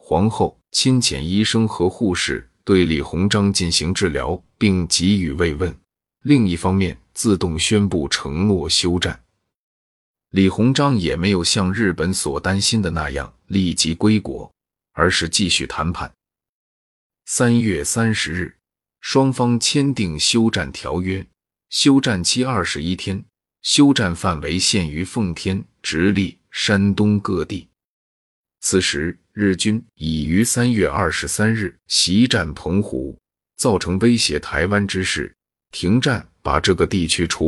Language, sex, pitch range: Chinese, male, 85-105 Hz